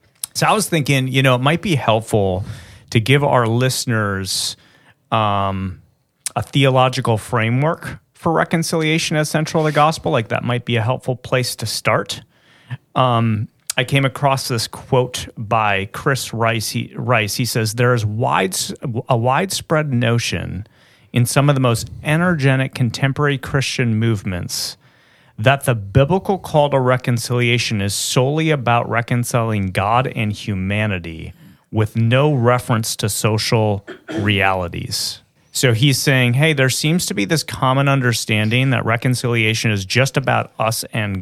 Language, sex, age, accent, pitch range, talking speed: English, male, 30-49, American, 110-135 Hz, 145 wpm